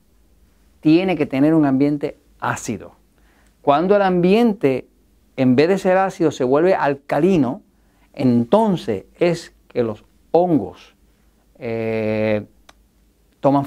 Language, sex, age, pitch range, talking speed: Spanish, male, 50-69, 120-175 Hz, 105 wpm